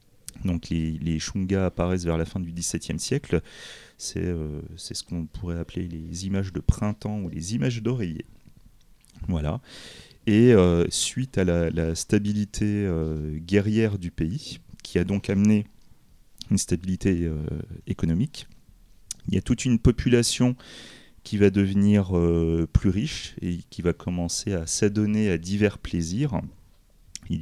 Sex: male